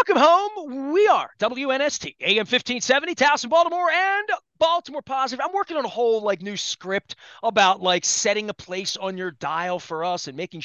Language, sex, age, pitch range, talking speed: English, male, 30-49, 180-245 Hz, 180 wpm